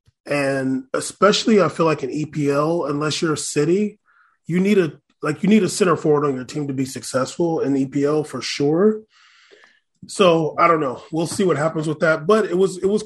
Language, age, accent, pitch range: English, 20-39, American, 140-175 Hz